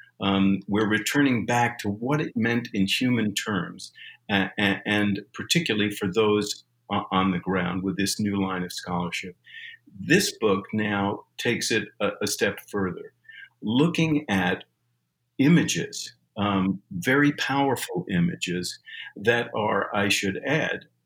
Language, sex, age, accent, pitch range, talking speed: English, male, 50-69, American, 95-120 Hz, 135 wpm